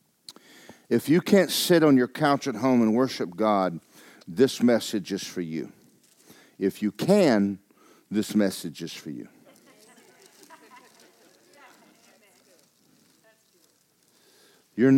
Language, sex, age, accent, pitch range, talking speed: English, male, 50-69, American, 100-140 Hz, 105 wpm